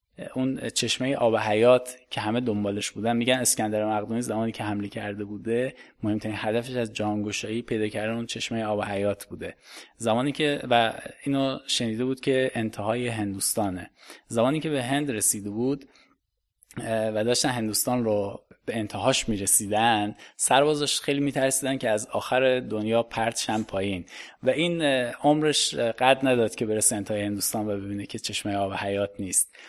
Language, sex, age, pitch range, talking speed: Persian, male, 20-39, 105-130 Hz, 150 wpm